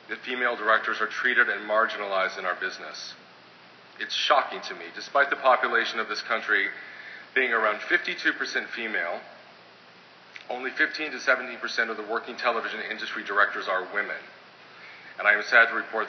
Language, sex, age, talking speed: English, male, 40-59, 165 wpm